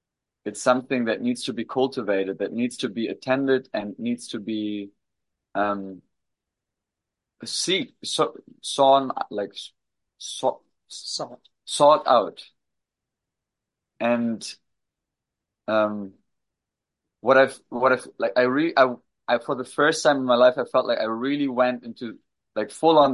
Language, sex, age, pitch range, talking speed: English, male, 20-39, 110-135 Hz, 135 wpm